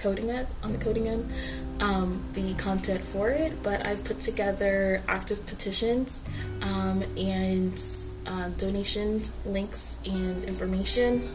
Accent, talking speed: American, 125 wpm